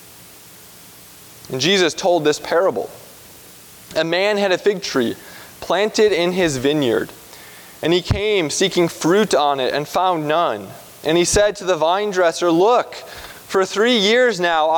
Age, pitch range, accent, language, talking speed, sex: 20-39, 135-190 Hz, American, English, 150 wpm, male